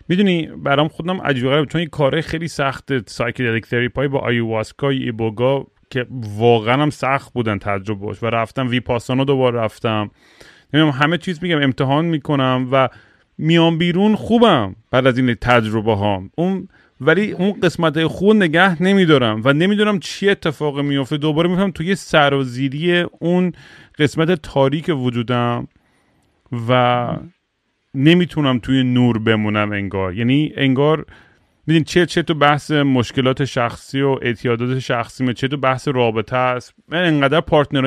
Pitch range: 125-160 Hz